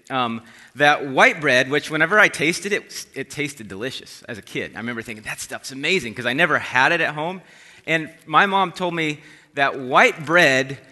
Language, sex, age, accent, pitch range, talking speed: English, male, 30-49, American, 145-190 Hz, 205 wpm